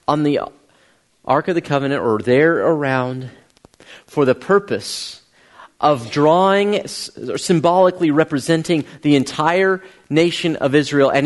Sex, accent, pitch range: male, American, 130-170 Hz